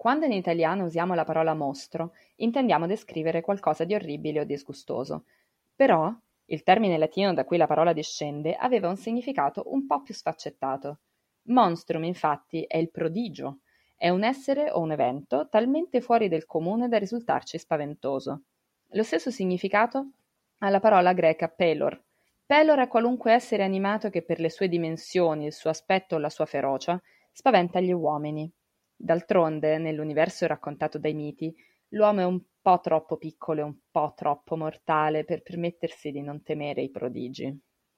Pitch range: 155-205 Hz